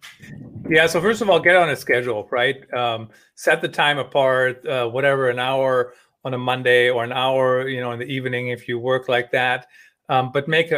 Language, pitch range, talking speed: English, 125-170 Hz, 210 wpm